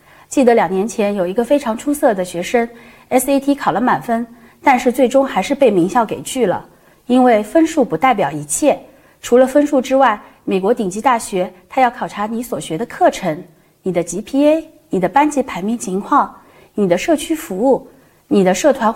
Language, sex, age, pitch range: Chinese, female, 30-49, 195-275 Hz